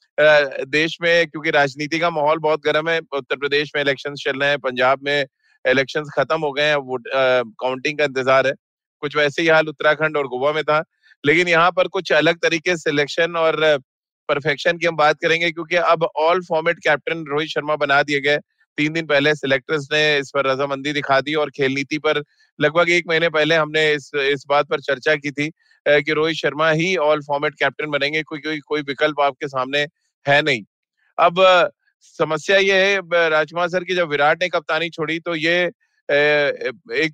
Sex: male